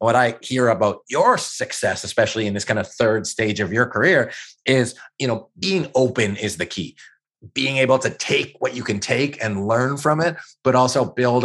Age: 30-49